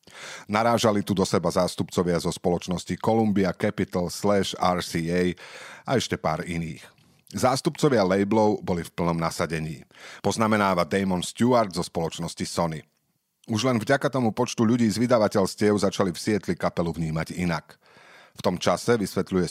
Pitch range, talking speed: 85-110 Hz, 140 wpm